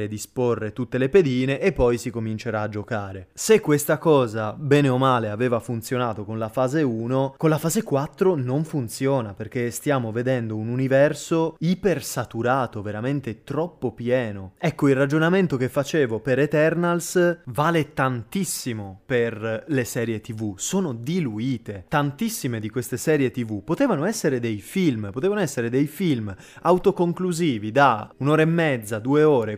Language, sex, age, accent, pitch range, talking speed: Italian, male, 20-39, native, 115-155 Hz, 145 wpm